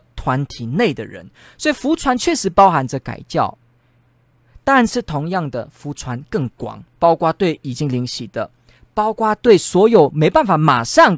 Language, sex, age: Chinese, male, 20-39